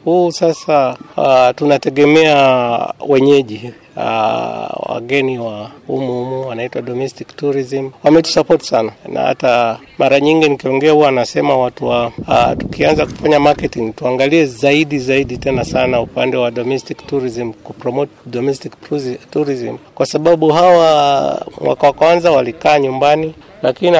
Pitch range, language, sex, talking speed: 125-150 Hz, Swahili, male, 130 wpm